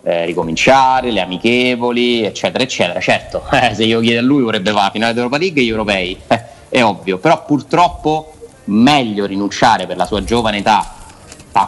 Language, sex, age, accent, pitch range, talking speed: Italian, male, 30-49, native, 95-120 Hz, 175 wpm